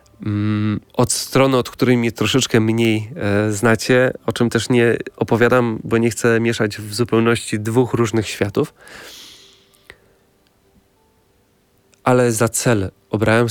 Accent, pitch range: native, 100-115 Hz